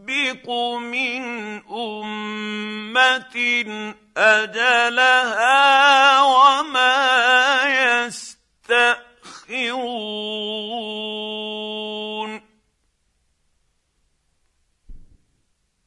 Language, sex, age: Arabic, male, 50-69